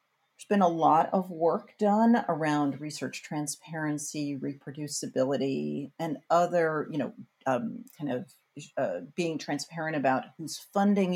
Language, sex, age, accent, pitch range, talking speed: English, female, 50-69, American, 150-205 Hz, 130 wpm